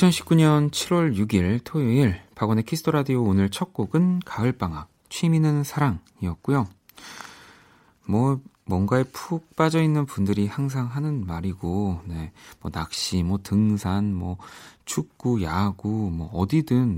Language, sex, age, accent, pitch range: Korean, male, 40-59, native, 95-135 Hz